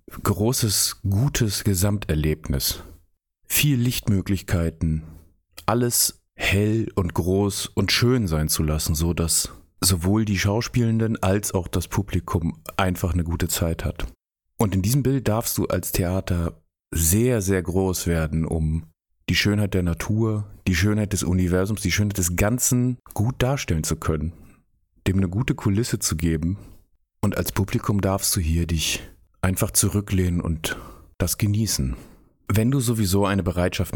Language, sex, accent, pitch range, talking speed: German, male, German, 85-105 Hz, 140 wpm